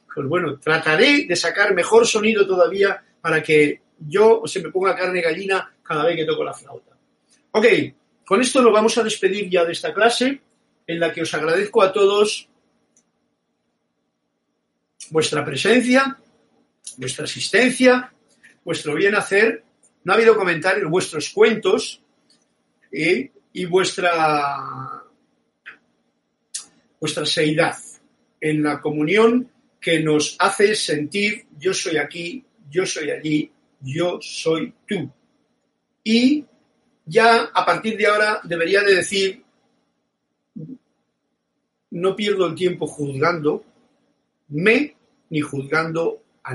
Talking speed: 115 wpm